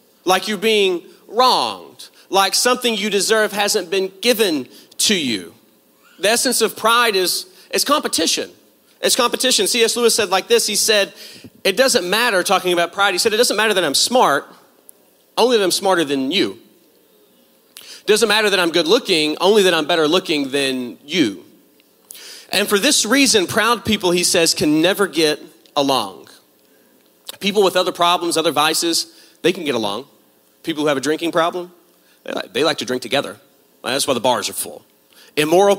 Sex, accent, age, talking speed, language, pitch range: male, American, 40-59, 175 wpm, English, 155-215 Hz